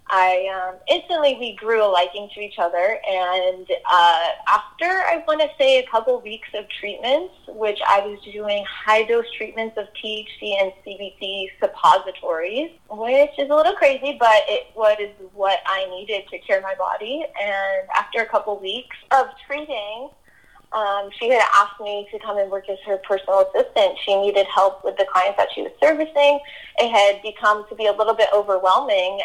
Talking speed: 180 wpm